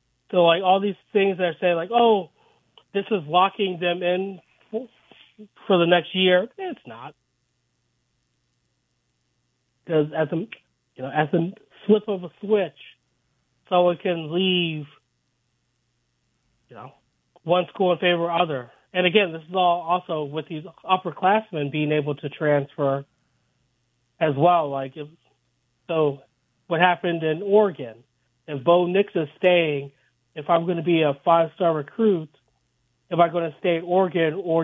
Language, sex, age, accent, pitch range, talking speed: English, male, 30-49, American, 140-185 Hz, 145 wpm